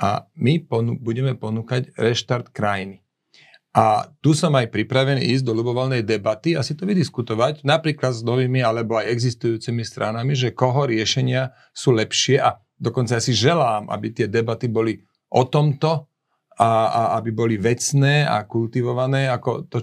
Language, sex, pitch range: Slovak, male, 115-135 Hz